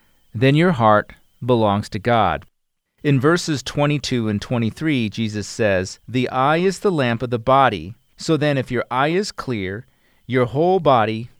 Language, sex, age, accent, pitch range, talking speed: English, male, 40-59, American, 115-150 Hz, 165 wpm